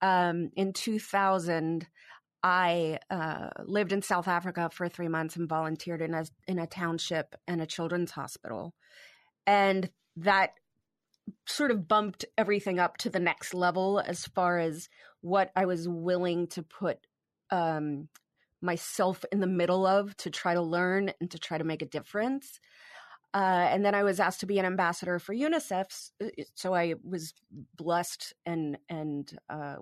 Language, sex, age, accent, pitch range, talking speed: English, female, 30-49, American, 160-195 Hz, 160 wpm